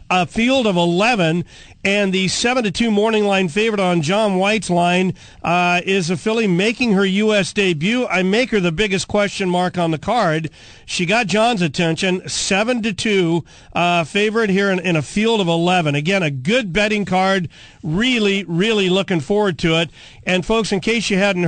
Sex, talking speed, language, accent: male, 180 wpm, English, American